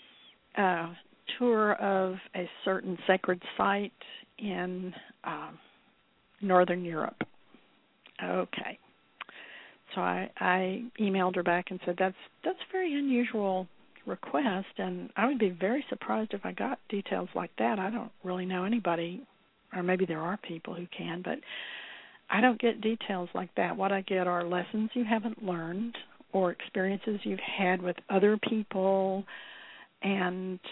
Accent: American